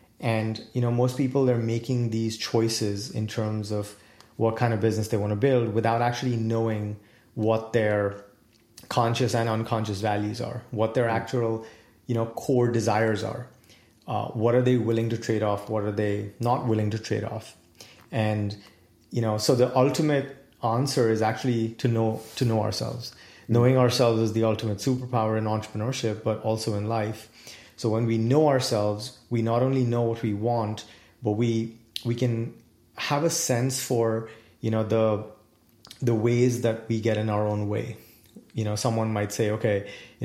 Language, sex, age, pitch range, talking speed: English, male, 30-49, 110-120 Hz, 175 wpm